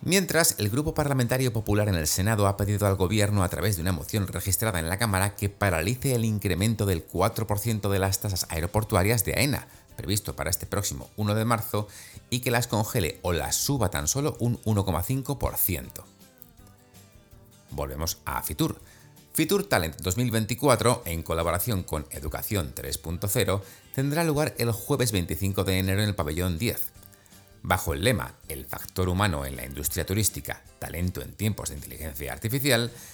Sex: male